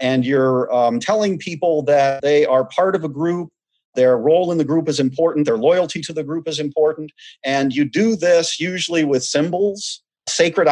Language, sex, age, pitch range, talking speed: English, male, 40-59, 145-185 Hz, 190 wpm